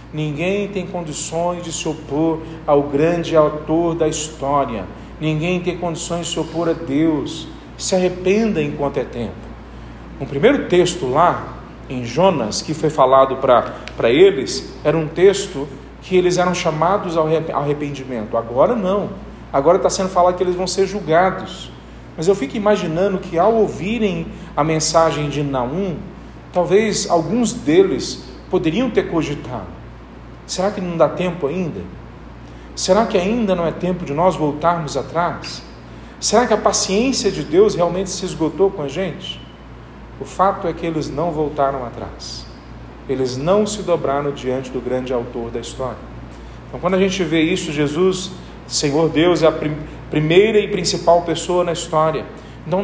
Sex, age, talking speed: male, 40-59, 155 wpm